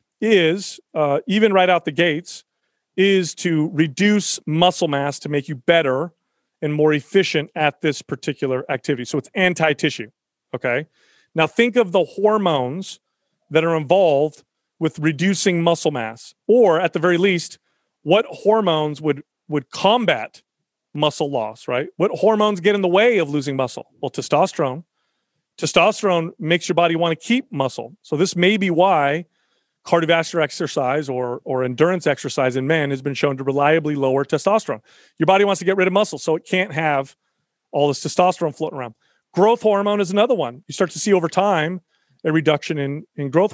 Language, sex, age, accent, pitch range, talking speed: English, male, 40-59, American, 150-190 Hz, 170 wpm